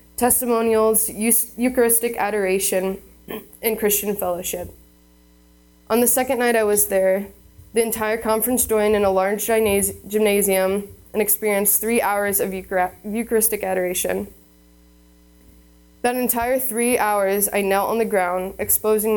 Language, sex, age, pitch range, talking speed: English, female, 20-39, 185-220 Hz, 120 wpm